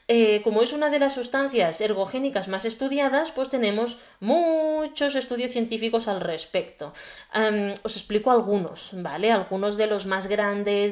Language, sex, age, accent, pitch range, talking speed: Spanish, female, 20-39, Spanish, 195-260 Hz, 150 wpm